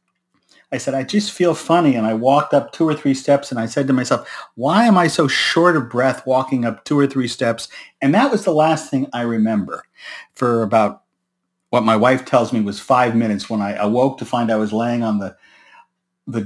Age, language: 50-69, English